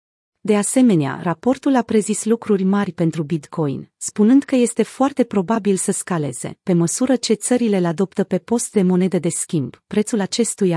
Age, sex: 30-49, female